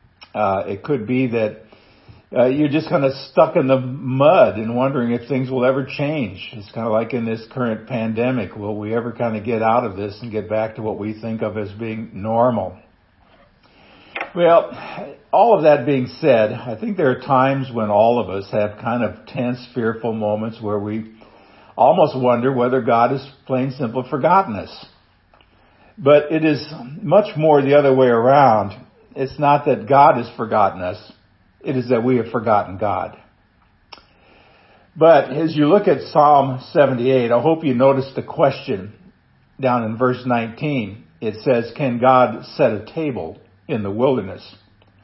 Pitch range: 110-135 Hz